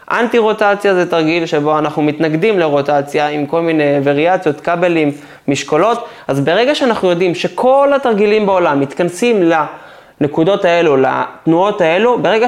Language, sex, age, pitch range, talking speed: Hebrew, male, 20-39, 145-190 Hz, 135 wpm